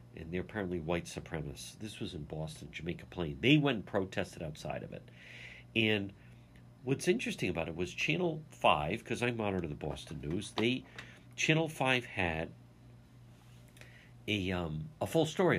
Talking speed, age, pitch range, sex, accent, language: 160 wpm, 60-79, 95-125 Hz, male, American, English